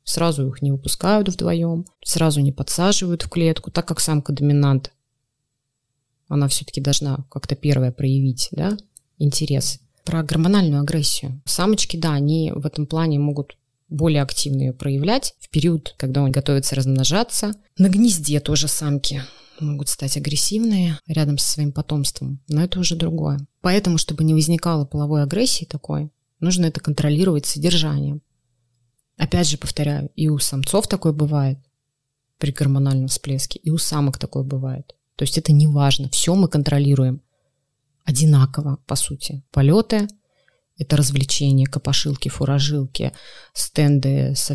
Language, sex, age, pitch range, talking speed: Russian, female, 20-39, 140-160 Hz, 140 wpm